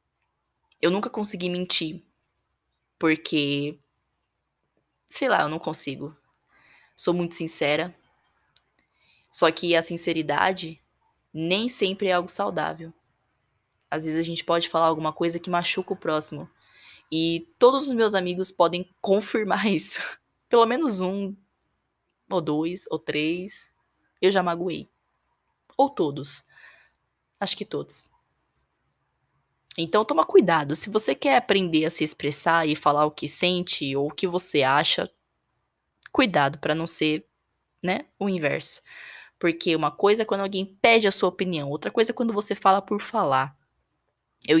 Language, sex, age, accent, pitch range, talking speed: Portuguese, female, 20-39, Brazilian, 155-190 Hz, 140 wpm